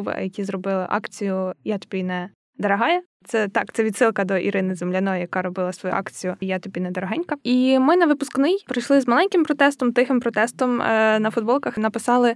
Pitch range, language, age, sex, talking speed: 210-265 Hz, Ukrainian, 10-29, female, 175 wpm